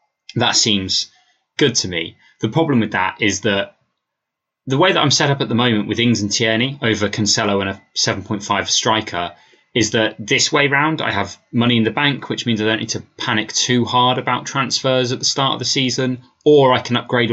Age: 20-39